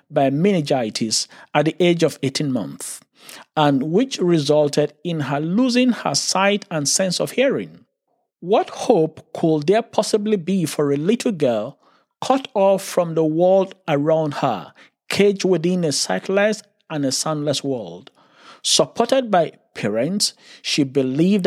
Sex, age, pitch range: male, 50-69, 140-185 Hz